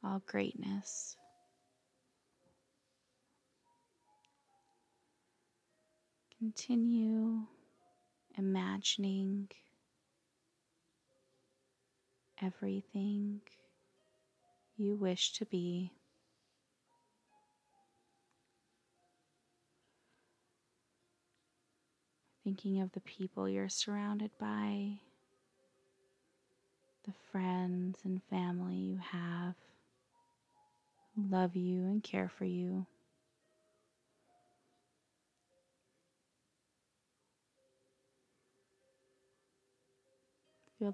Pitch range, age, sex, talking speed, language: 130-205 Hz, 20-39, female, 45 wpm, English